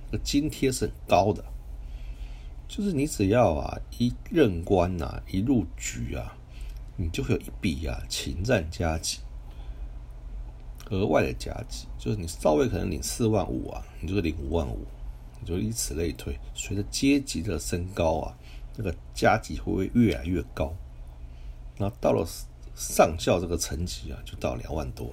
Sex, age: male, 60-79